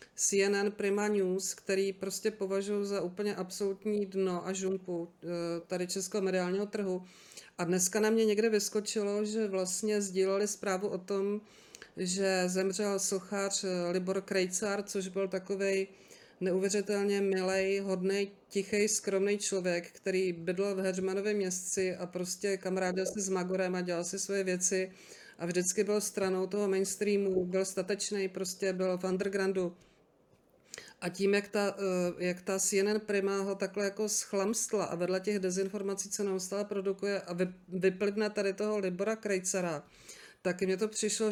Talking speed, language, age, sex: 145 wpm, Czech, 40-59, female